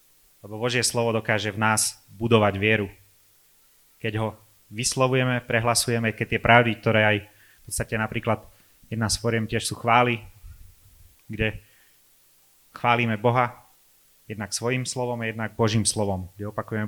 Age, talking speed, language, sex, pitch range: 30-49, 130 wpm, Slovak, male, 105-120 Hz